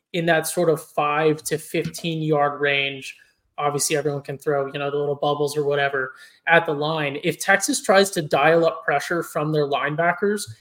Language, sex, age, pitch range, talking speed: English, male, 20-39, 145-175 Hz, 180 wpm